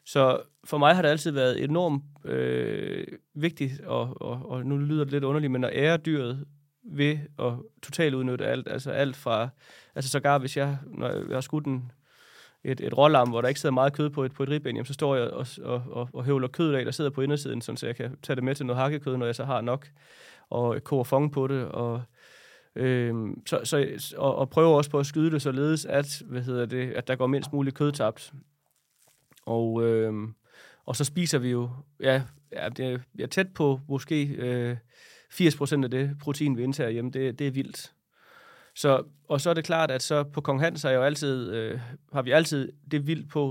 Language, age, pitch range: Danish, 20-39, 125-145 Hz